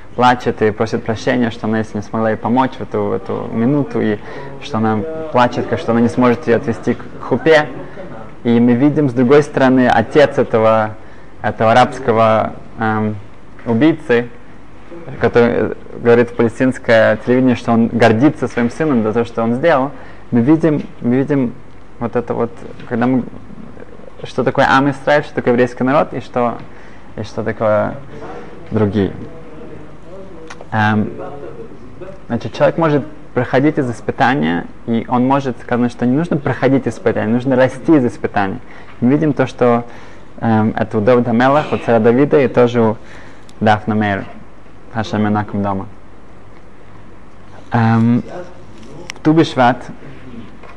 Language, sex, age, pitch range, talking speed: Russian, male, 20-39, 110-130 Hz, 140 wpm